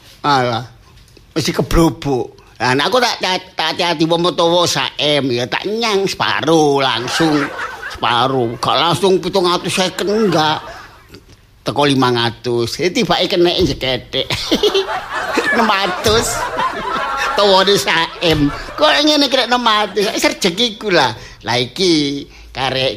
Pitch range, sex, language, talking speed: 125-175 Hz, male, Indonesian, 95 wpm